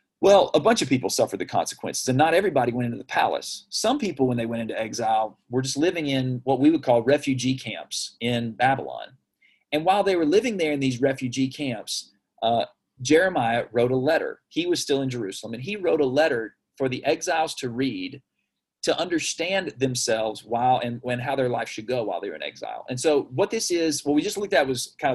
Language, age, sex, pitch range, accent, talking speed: English, 40-59, male, 120-150 Hz, American, 220 wpm